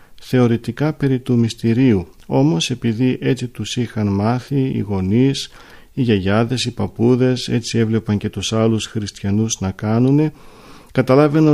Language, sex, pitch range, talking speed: Greek, male, 105-125 Hz, 130 wpm